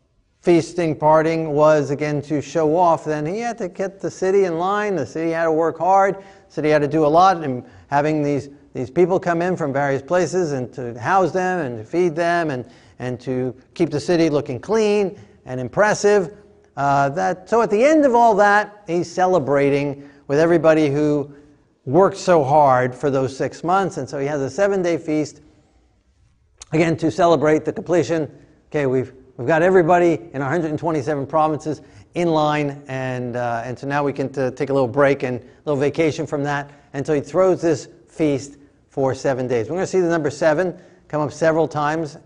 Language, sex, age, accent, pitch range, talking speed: English, male, 50-69, American, 140-175 Hz, 195 wpm